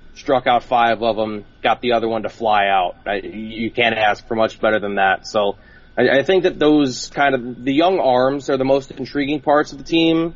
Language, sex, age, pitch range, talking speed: English, male, 20-39, 110-125 Hz, 240 wpm